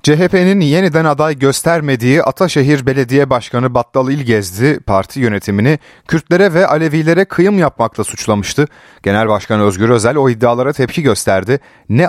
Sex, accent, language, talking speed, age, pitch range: male, native, Turkish, 130 wpm, 30-49, 105-150 Hz